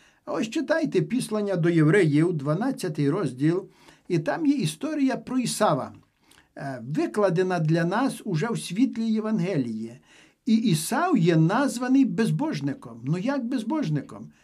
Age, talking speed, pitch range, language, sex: 50-69, 115 wpm, 155-215 Hz, Ukrainian, male